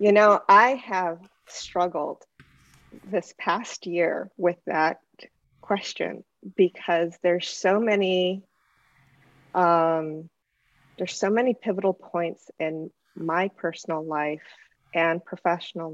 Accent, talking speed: American, 100 wpm